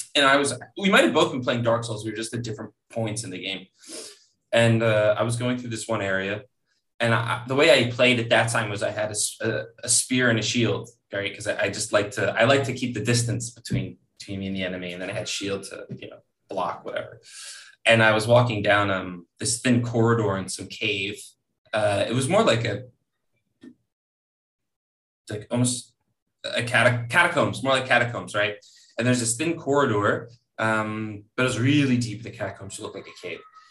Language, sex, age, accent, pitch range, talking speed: English, male, 20-39, American, 110-130 Hz, 215 wpm